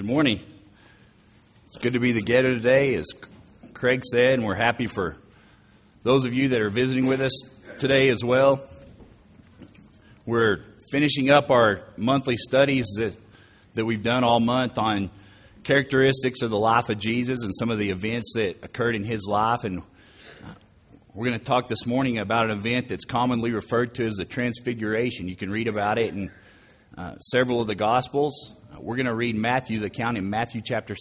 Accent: American